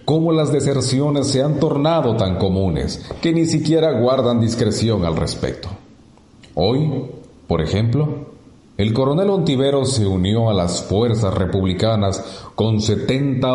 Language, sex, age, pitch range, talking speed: Spanish, male, 40-59, 95-130 Hz, 130 wpm